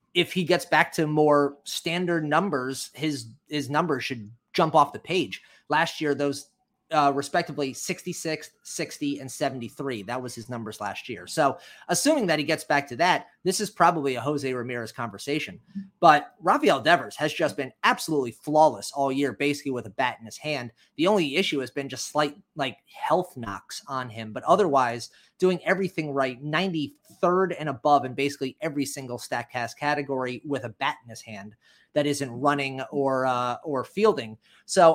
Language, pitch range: English, 130-160 Hz